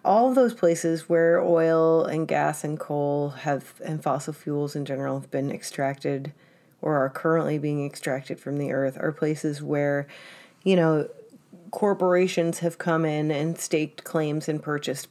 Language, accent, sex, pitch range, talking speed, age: English, American, female, 150-180 Hz, 165 wpm, 30-49